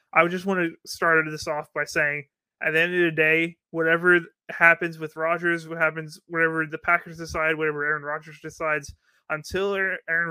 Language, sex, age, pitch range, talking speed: English, male, 20-39, 150-170 Hz, 180 wpm